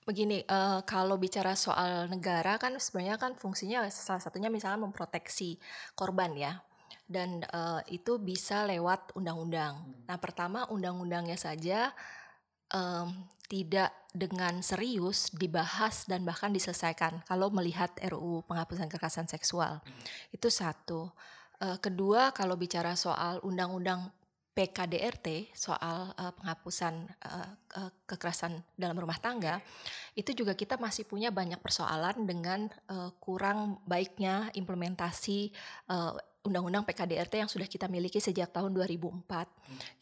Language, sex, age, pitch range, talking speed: Indonesian, female, 20-39, 175-205 Hz, 110 wpm